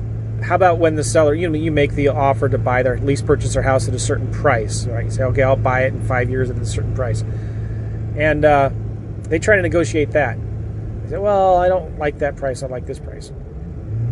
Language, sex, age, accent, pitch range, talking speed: English, male, 30-49, American, 110-145 Hz, 235 wpm